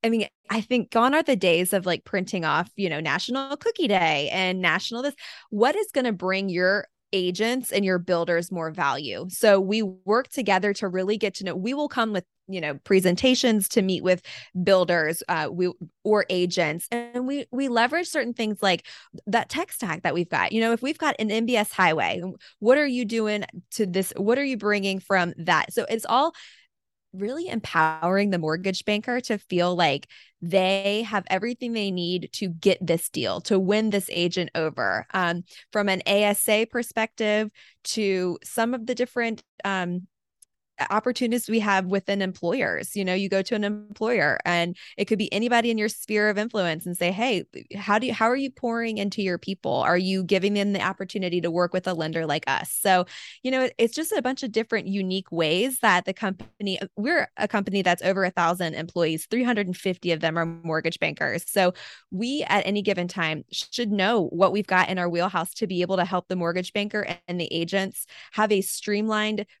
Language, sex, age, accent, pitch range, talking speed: English, female, 20-39, American, 180-225 Hz, 195 wpm